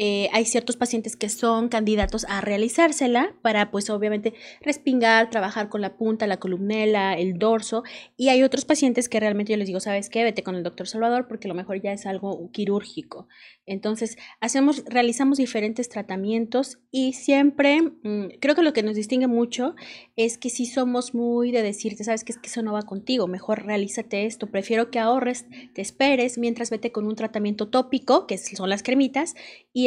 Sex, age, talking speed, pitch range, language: female, 30-49, 185 wpm, 210-255 Hz, Spanish